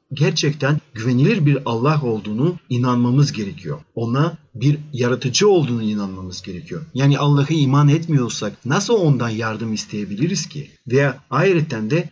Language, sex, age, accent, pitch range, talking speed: Turkish, male, 40-59, native, 125-160 Hz, 125 wpm